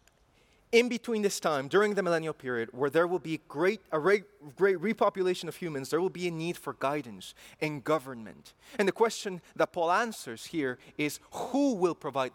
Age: 30-49